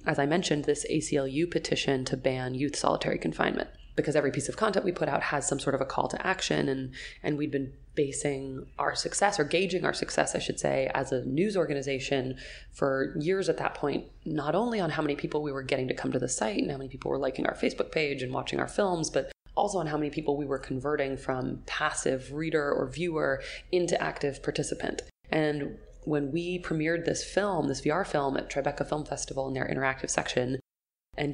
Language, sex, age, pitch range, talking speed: English, female, 20-39, 135-165 Hz, 215 wpm